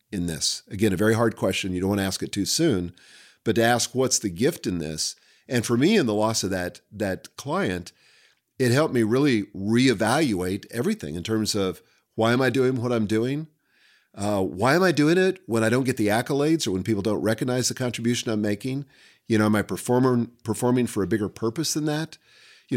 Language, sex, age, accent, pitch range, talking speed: English, male, 50-69, American, 105-135 Hz, 220 wpm